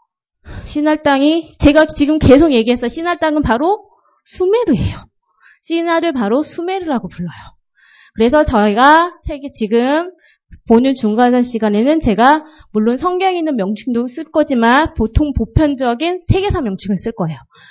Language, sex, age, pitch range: Korean, female, 30-49, 220-330 Hz